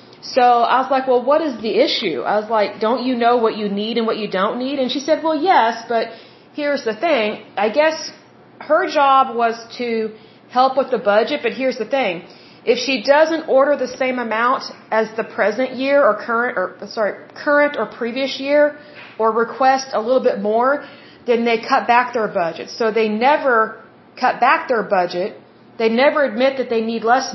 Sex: female